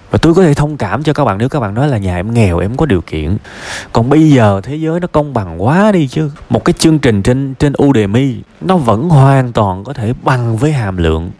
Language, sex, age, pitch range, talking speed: Vietnamese, male, 20-39, 90-130 Hz, 260 wpm